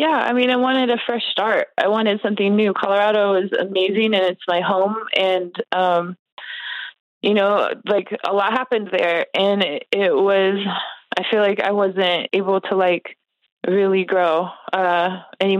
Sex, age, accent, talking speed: female, 20-39, American, 170 wpm